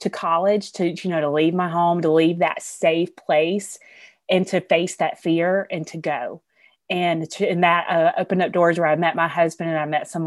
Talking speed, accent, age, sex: 230 wpm, American, 30-49, female